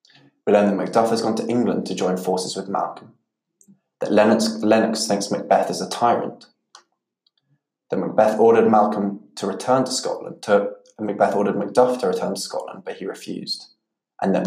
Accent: British